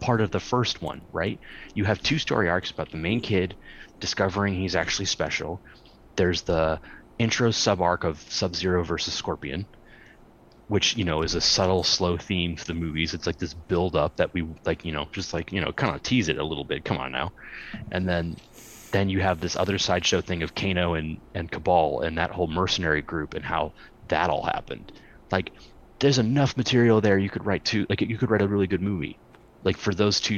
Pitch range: 85-115 Hz